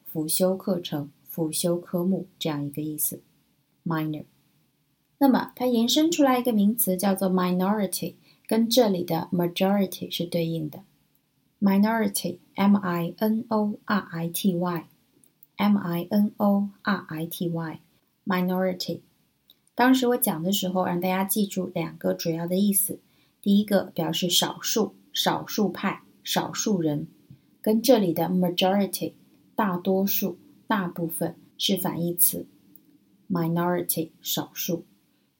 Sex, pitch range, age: female, 165-195 Hz, 20-39